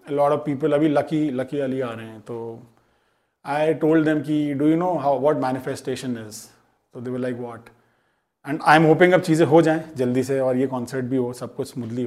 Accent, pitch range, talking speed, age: native, 130-165 Hz, 190 wpm, 30-49